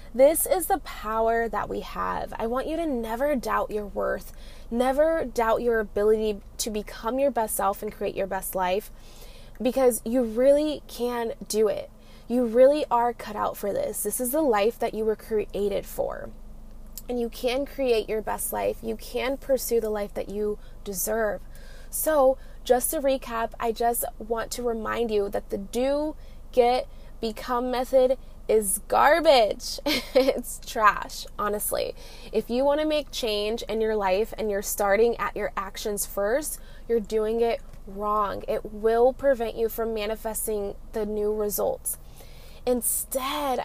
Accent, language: American, English